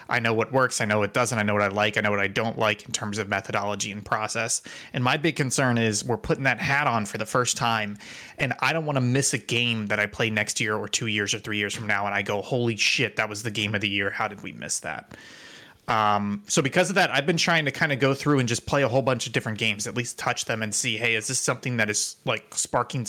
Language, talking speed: English, 295 wpm